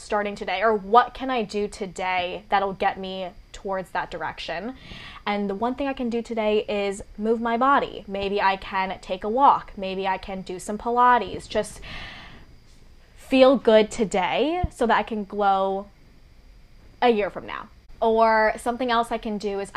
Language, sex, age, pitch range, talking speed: English, female, 10-29, 190-225 Hz, 175 wpm